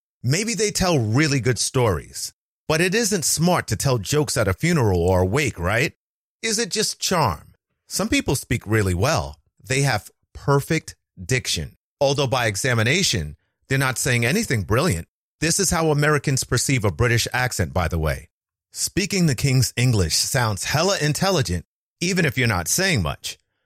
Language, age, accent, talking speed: English, 30-49, American, 165 wpm